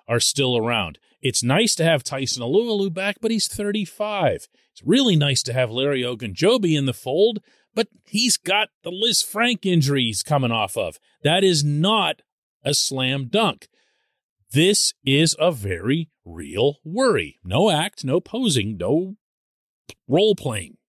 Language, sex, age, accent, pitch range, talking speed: English, male, 40-59, American, 120-185 Hz, 145 wpm